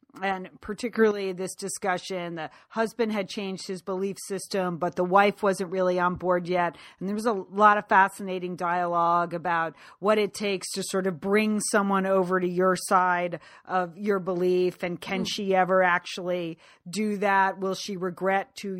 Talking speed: 170 wpm